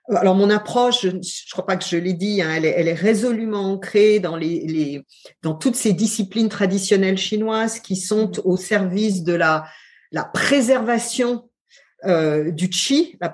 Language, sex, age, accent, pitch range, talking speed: French, female, 50-69, French, 185-230 Hz, 175 wpm